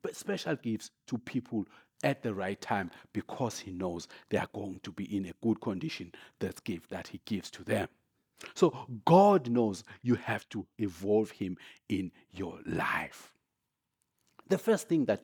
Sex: male